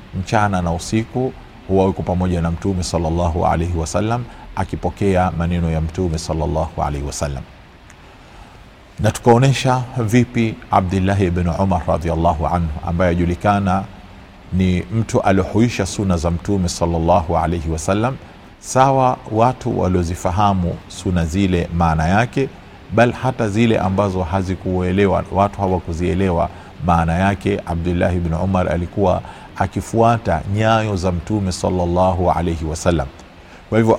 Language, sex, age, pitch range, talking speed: Swahili, male, 40-59, 85-105 Hz, 115 wpm